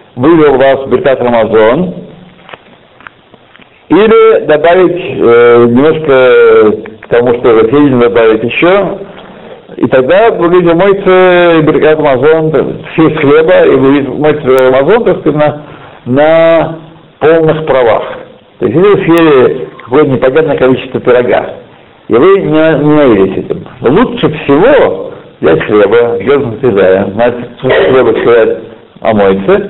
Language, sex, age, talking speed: Russian, male, 60-79, 115 wpm